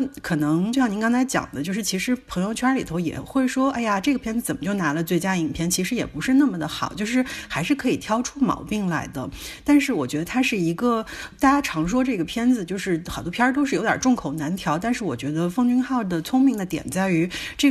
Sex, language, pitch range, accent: female, Chinese, 170-250 Hz, native